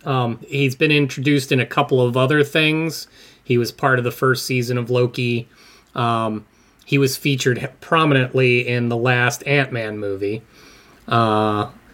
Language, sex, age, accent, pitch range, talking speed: English, male, 30-49, American, 120-145 Hz, 150 wpm